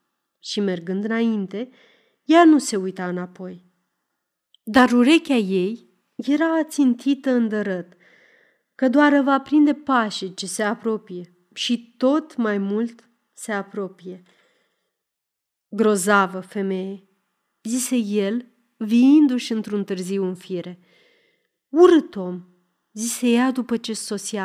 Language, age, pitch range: Romanian, 30-49, 190-255 Hz